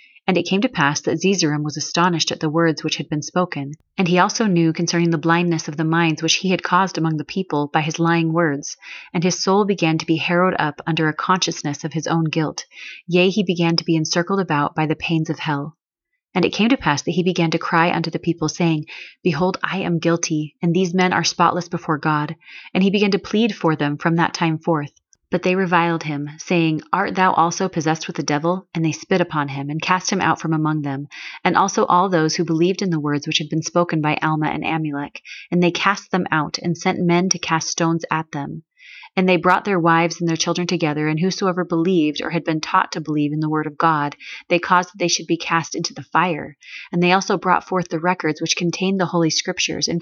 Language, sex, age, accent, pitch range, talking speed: English, female, 30-49, American, 155-180 Hz, 240 wpm